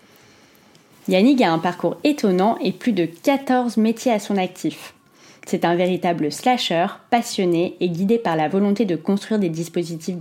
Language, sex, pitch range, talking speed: French, female, 170-235 Hz, 160 wpm